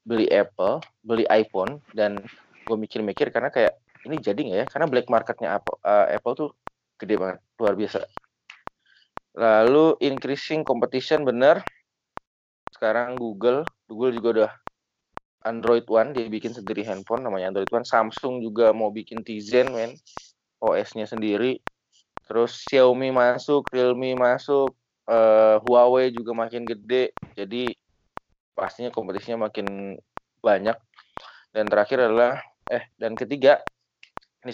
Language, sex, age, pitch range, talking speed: Indonesian, male, 20-39, 110-125 Hz, 130 wpm